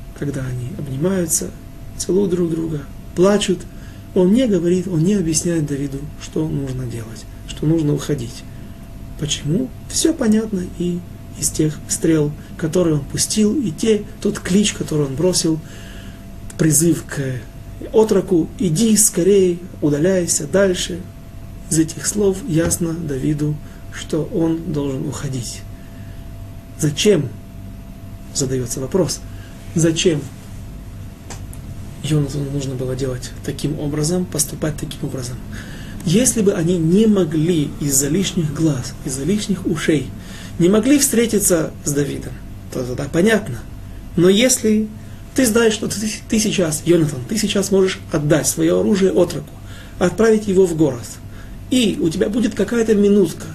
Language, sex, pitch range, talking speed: Russian, male, 125-185 Hz, 130 wpm